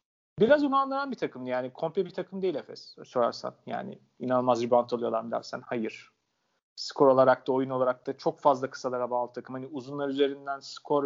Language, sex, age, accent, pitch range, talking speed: Turkish, male, 40-59, native, 130-155 Hz, 175 wpm